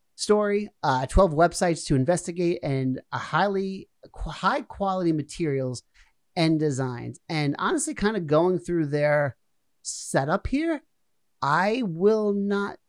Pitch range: 135-185 Hz